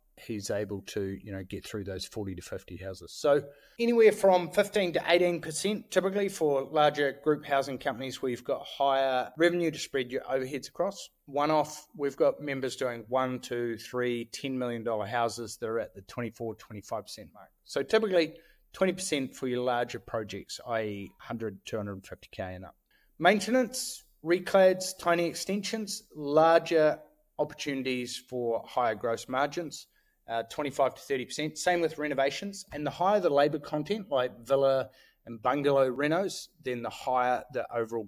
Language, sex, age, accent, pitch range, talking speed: English, male, 30-49, Australian, 120-165 Hz, 150 wpm